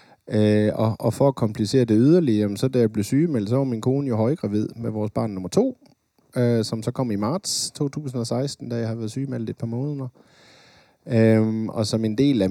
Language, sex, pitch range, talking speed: Danish, male, 105-135 Hz, 220 wpm